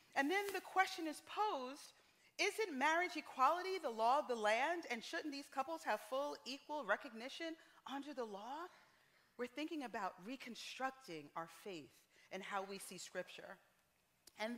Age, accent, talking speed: 40-59, American, 150 wpm